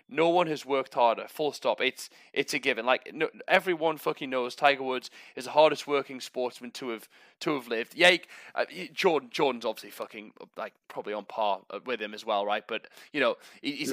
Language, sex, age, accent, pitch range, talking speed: English, male, 20-39, British, 125-165 Hz, 210 wpm